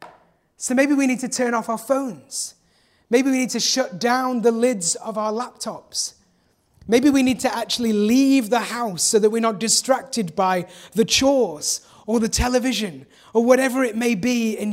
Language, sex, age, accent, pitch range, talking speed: English, male, 30-49, British, 175-230 Hz, 185 wpm